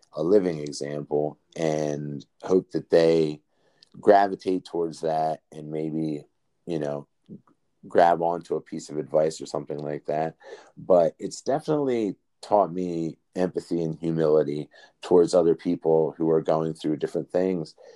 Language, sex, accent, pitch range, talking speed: English, male, American, 80-90 Hz, 135 wpm